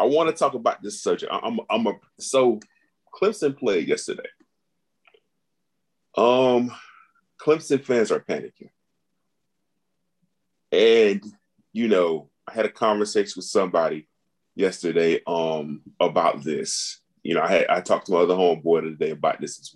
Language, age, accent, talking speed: English, 30-49, American, 140 wpm